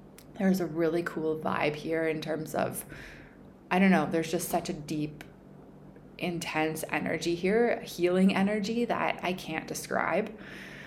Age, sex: 20-39, female